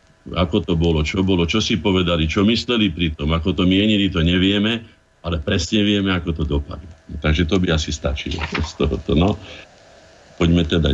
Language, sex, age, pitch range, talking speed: Slovak, male, 50-69, 80-100 Hz, 185 wpm